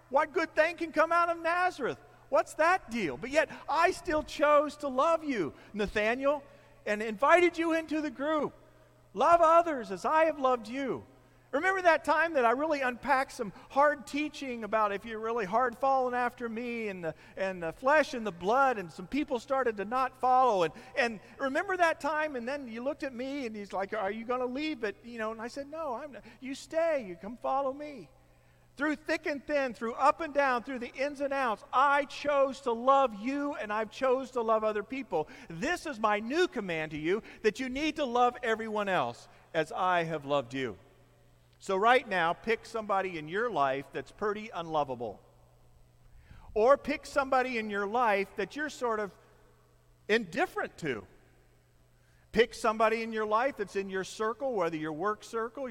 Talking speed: 195 wpm